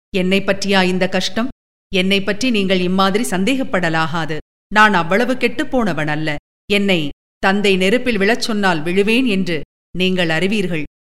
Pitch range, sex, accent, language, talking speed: 180-275 Hz, female, native, Tamil, 120 wpm